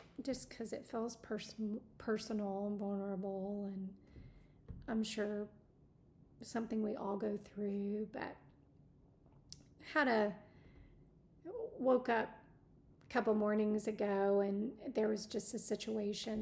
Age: 40-59